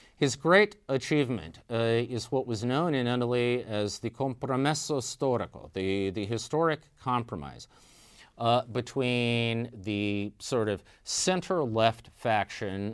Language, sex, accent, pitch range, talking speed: English, male, American, 100-125 Hz, 115 wpm